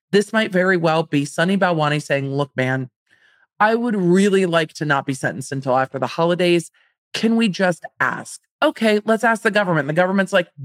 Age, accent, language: 40-59, American, English